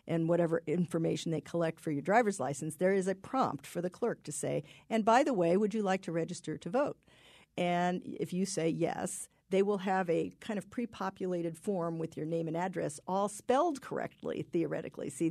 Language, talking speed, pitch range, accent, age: English, 205 wpm, 165-200 Hz, American, 50-69